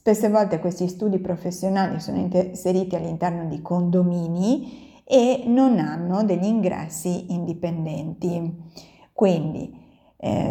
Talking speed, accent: 105 wpm, native